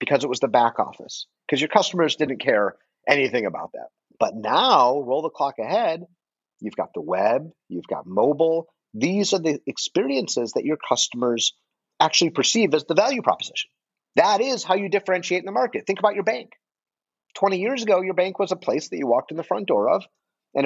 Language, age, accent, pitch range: English, 30-49, American, 135-200 Hz